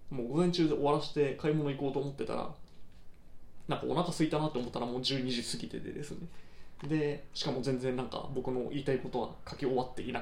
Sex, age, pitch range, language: male, 20-39, 120-150 Hz, Japanese